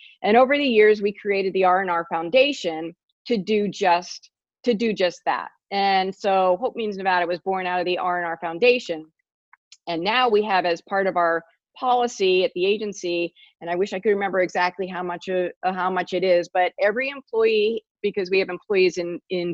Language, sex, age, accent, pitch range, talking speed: English, female, 40-59, American, 180-215 Hz, 195 wpm